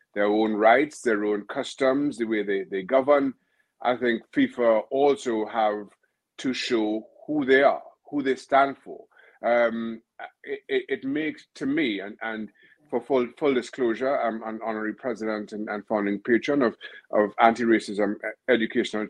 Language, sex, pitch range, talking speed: English, male, 115-155 Hz, 155 wpm